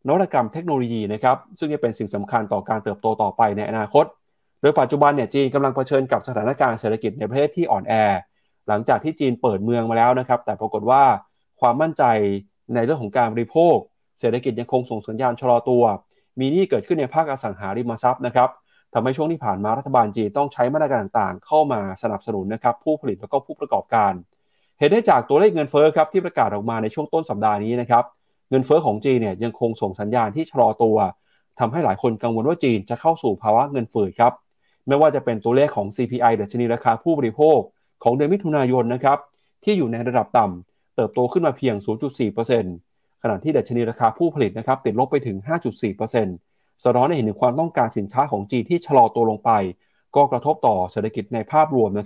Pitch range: 110-145 Hz